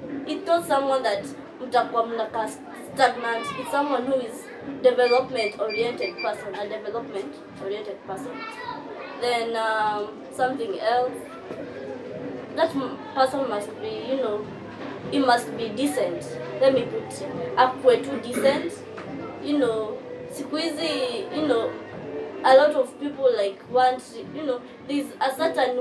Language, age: Swahili, 20-39